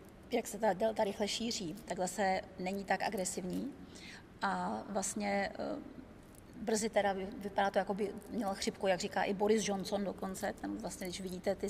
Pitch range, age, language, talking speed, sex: 195-210 Hz, 30-49, Czech, 160 wpm, female